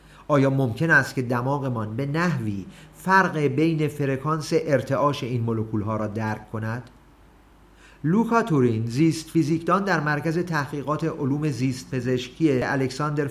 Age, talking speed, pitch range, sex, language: 50-69, 115 wpm, 115-160 Hz, male, Persian